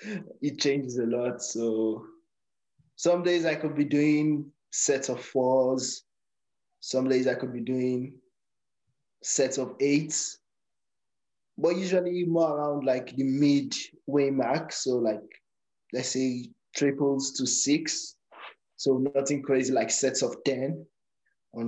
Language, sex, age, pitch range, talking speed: English, male, 20-39, 130-155 Hz, 130 wpm